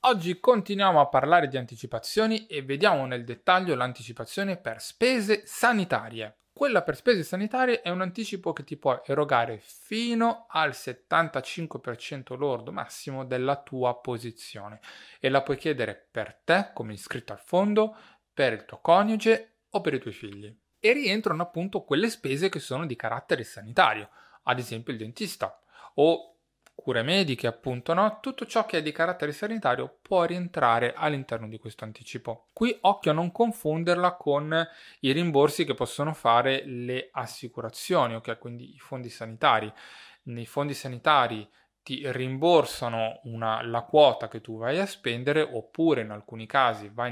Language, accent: Italian, native